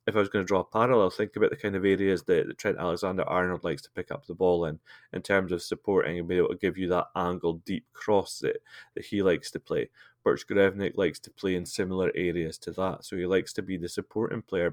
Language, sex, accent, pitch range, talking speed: English, male, British, 90-100 Hz, 255 wpm